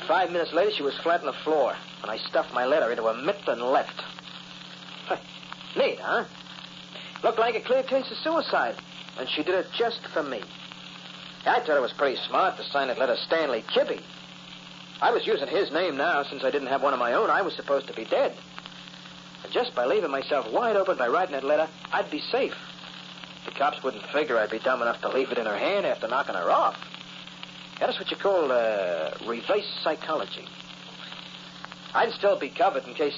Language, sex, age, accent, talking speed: English, male, 50-69, American, 205 wpm